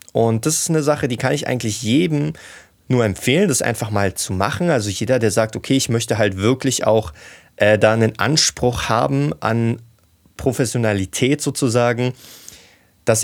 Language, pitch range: German, 110-140 Hz